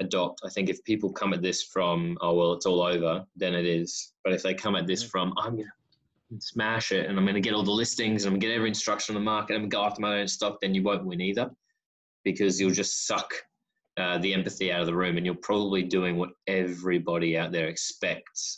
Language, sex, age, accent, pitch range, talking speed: English, male, 20-39, Australian, 85-100 Hz, 250 wpm